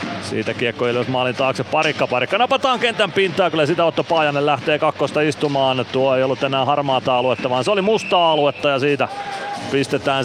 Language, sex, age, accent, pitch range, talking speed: Finnish, male, 30-49, native, 125-170 Hz, 175 wpm